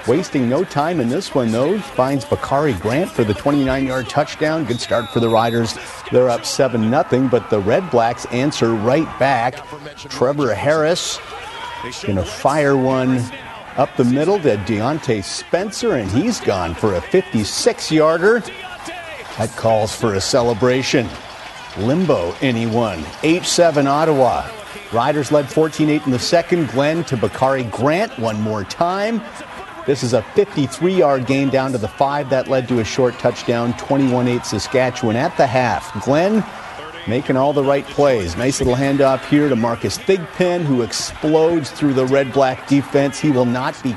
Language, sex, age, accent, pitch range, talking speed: English, male, 50-69, American, 115-150 Hz, 155 wpm